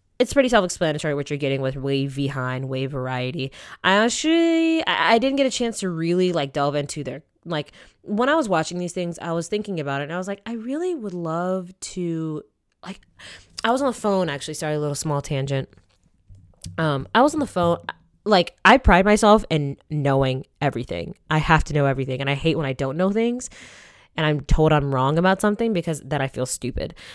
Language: English